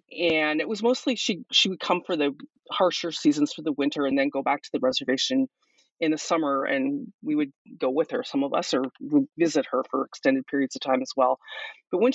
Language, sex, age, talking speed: English, female, 30-49, 225 wpm